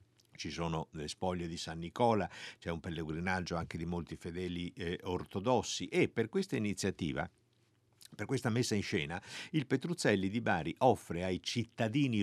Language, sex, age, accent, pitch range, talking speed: Italian, male, 60-79, native, 95-120 Hz, 155 wpm